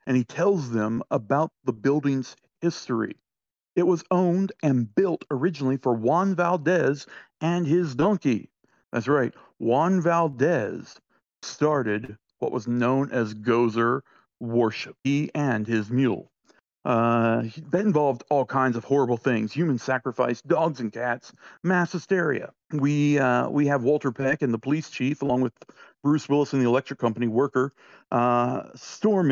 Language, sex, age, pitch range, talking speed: English, male, 50-69, 125-165 Hz, 145 wpm